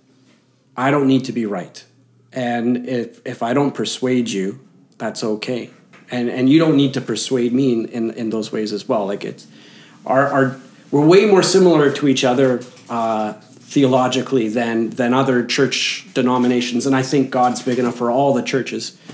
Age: 40-59